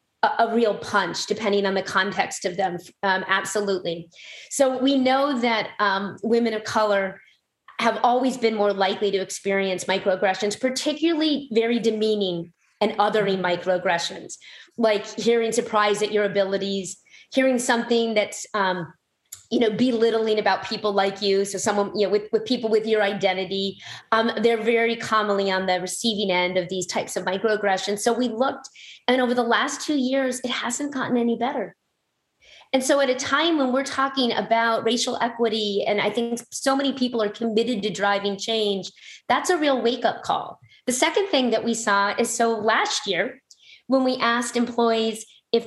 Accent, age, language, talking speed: American, 30-49, English, 170 wpm